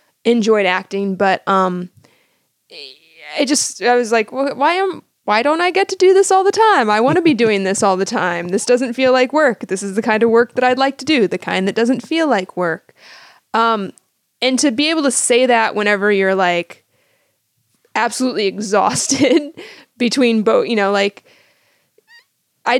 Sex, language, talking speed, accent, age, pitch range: female, English, 190 wpm, American, 20-39, 200-260 Hz